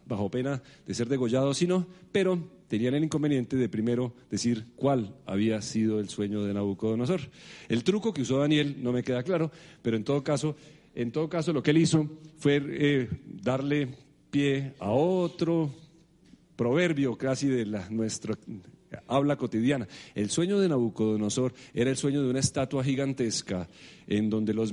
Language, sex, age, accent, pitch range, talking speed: Spanish, male, 40-59, Colombian, 115-150 Hz, 165 wpm